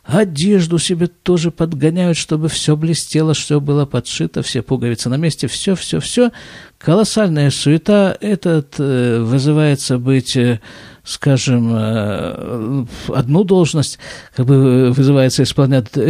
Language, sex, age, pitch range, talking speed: Russian, male, 50-69, 130-180 Hz, 110 wpm